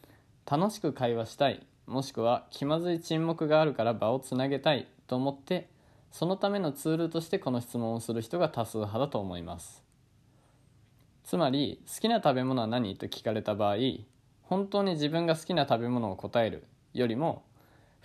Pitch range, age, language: 115-150 Hz, 20-39, Japanese